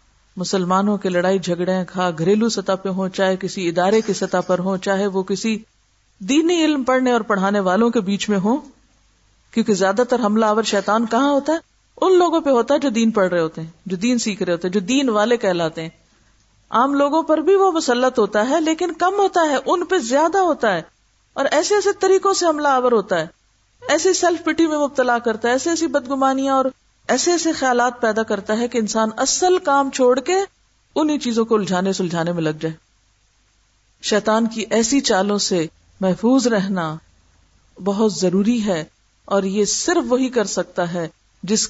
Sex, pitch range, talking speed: female, 185-265 Hz, 190 wpm